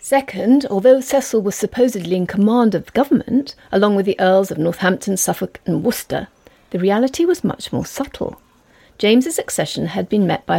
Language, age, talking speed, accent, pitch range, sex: English, 40-59, 175 wpm, British, 190-270 Hz, female